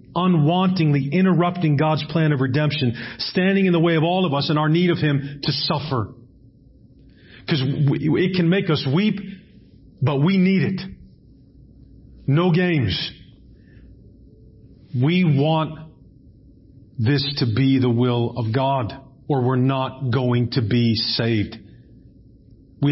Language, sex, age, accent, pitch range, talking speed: English, male, 40-59, American, 115-145 Hz, 130 wpm